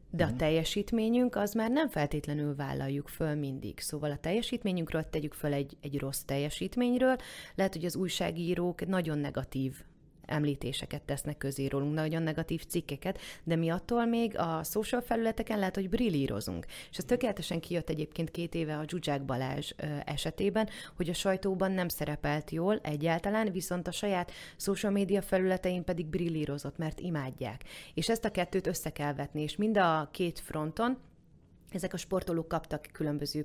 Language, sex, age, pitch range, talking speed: Hungarian, female, 30-49, 145-190 Hz, 155 wpm